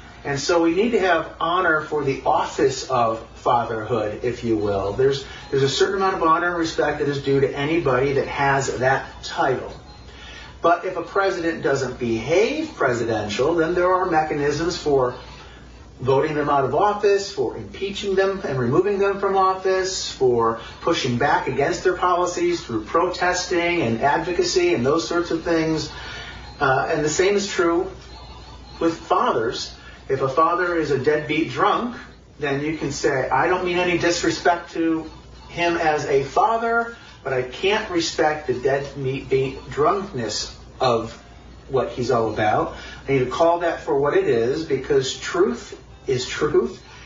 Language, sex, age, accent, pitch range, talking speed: English, male, 40-59, American, 135-190 Hz, 160 wpm